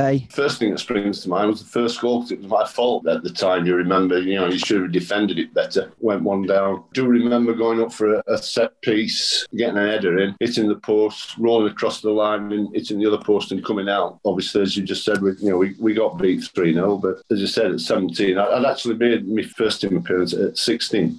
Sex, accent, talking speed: male, British, 250 wpm